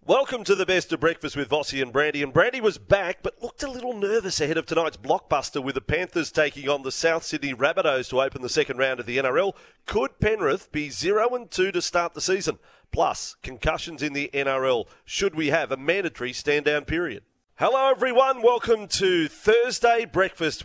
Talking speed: 200 wpm